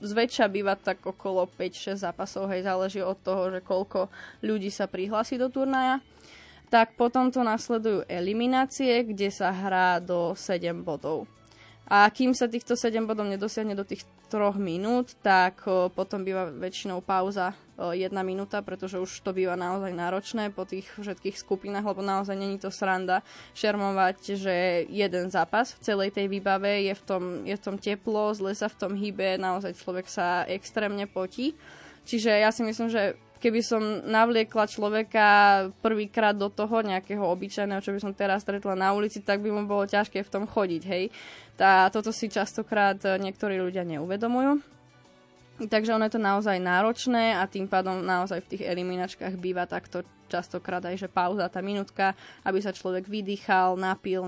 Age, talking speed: 20-39, 165 wpm